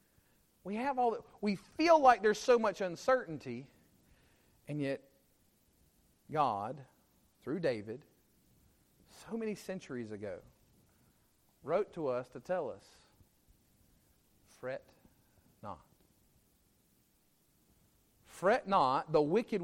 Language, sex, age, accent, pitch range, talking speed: English, male, 40-59, American, 125-190 Hz, 100 wpm